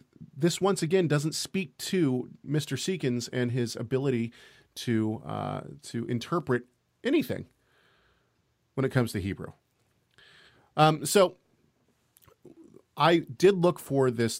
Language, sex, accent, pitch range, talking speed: English, male, American, 115-160 Hz, 115 wpm